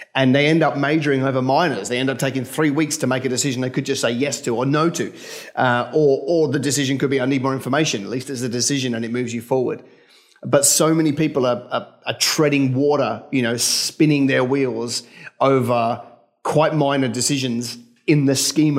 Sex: male